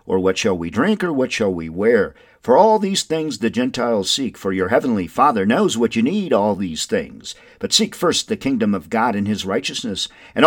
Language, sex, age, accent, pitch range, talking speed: English, male, 50-69, American, 155-230 Hz, 225 wpm